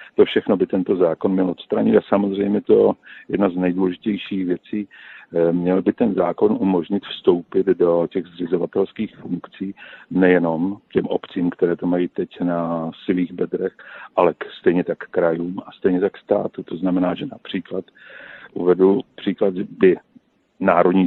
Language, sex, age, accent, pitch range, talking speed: Czech, male, 50-69, native, 90-100 Hz, 150 wpm